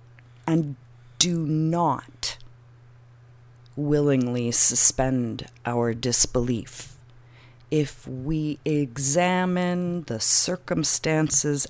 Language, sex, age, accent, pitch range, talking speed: English, female, 40-59, American, 120-170 Hz, 60 wpm